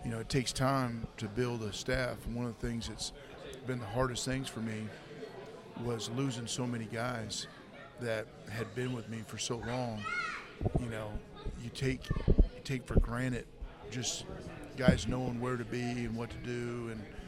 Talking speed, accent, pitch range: 185 wpm, American, 110-130 Hz